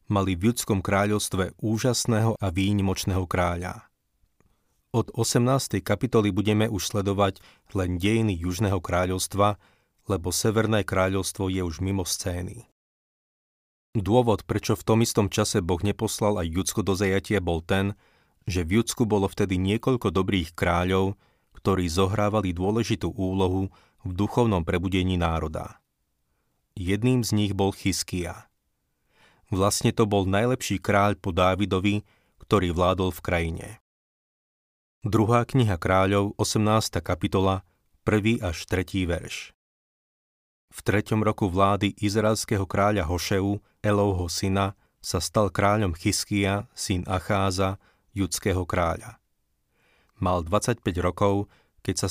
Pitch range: 90-105 Hz